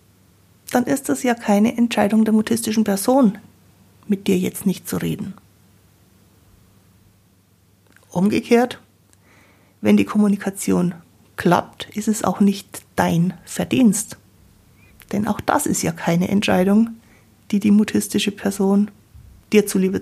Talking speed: 115 wpm